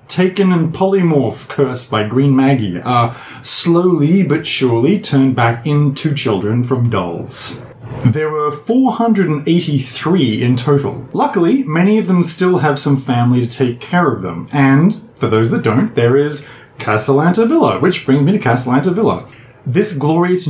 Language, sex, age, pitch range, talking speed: English, male, 30-49, 125-160 Hz, 150 wpm